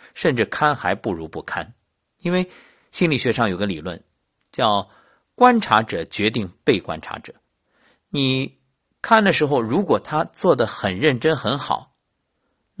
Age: 50-69